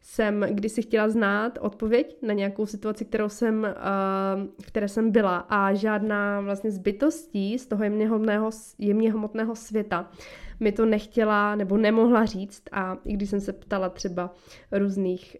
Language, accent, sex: Czech, native, female